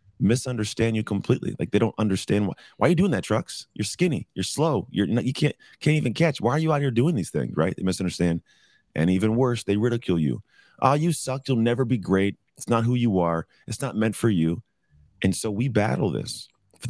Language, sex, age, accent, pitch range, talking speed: English, male, 30-49, American, 85-110 Hz, 235 wpm